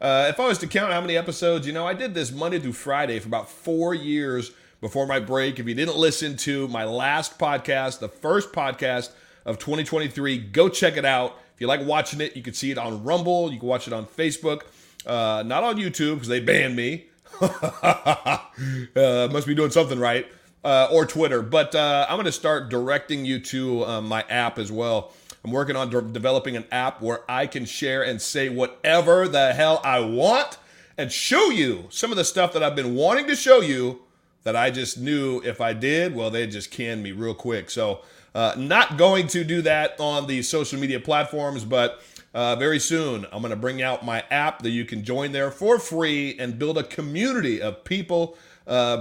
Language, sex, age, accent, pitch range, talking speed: English, male, 40-59, American, 125-160 Hz, 210 wpm